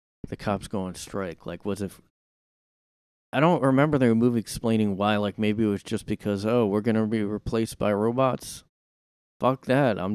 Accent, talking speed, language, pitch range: American, 185 wpm, English, 95-120 Hz